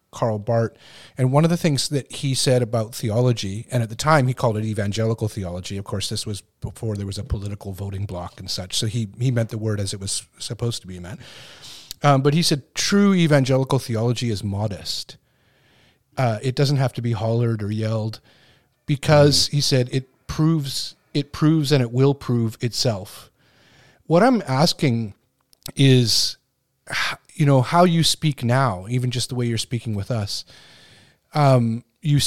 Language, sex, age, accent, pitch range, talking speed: English, male, 40-59, American, 110-140 Hz, 180 wpm